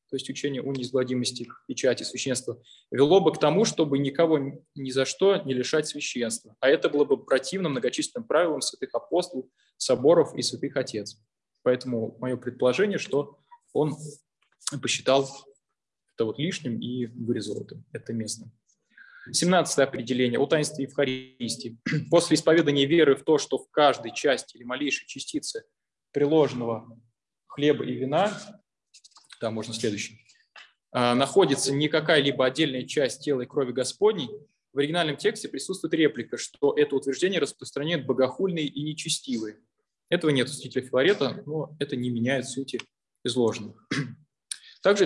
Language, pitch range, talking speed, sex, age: Russian, 125-155 Hz, 135 wpm, male, 20-39